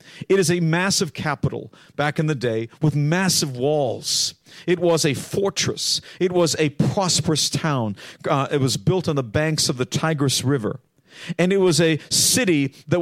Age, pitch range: 50-69, 135-170 Hz